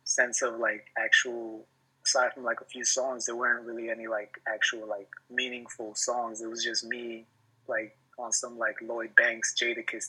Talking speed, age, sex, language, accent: 180 wpm, 20-39, male, English, American